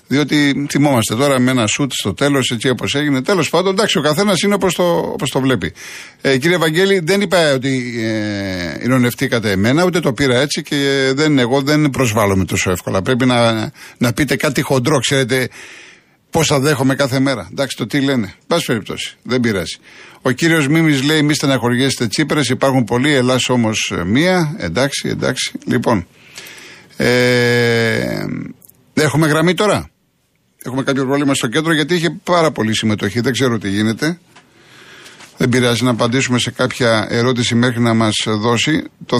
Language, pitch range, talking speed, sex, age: Greek, 120-145 Hz, 170 wpm, male, 50-69